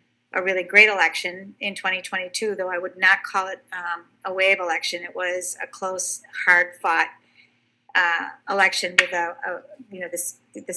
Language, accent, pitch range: English, American, 185-210 Hz